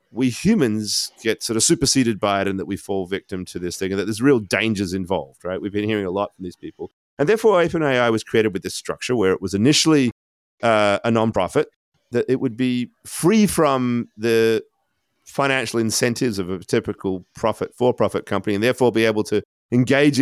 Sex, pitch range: male, 95-130 Hz